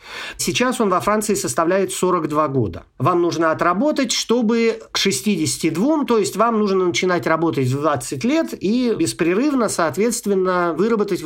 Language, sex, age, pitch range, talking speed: Russian, male, 50-69, 155-205 Hz, 140 wpm